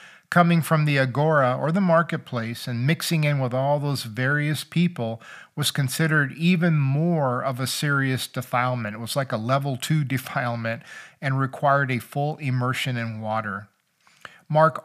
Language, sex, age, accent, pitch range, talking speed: English, male, 50-69, American, 125-155 Hz, 155 wpm